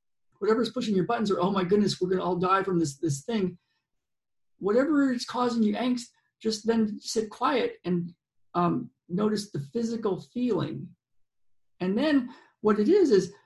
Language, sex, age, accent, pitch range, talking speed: English, male, 50-69, American, 170-230 Hz, 165 wpm